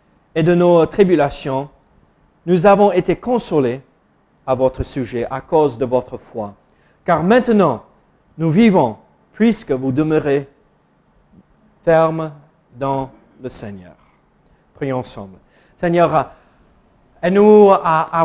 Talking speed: 110 wpm